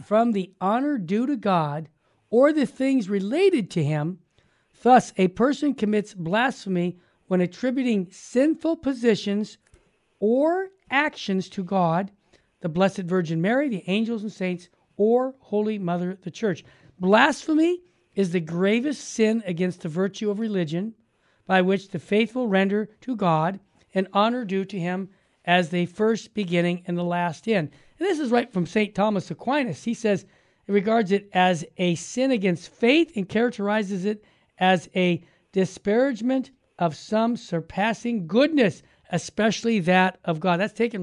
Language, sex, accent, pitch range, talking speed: English, male, American, 180-230 Hz, 150 wpm